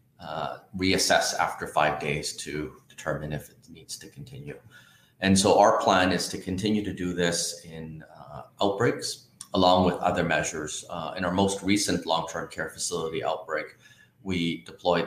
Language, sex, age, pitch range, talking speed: English, male, 30-49, 85-100 Hz, 160 wpm